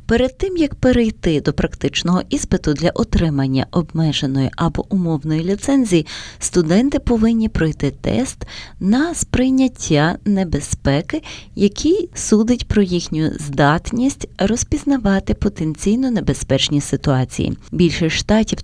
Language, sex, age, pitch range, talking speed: Ukrainian, female, 30-49, 150-215 Hz, 100 wpm